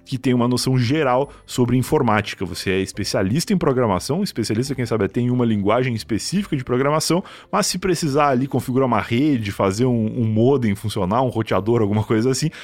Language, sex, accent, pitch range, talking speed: Portuguese, male, Brazilian, 105-130 Hz, 180 wpm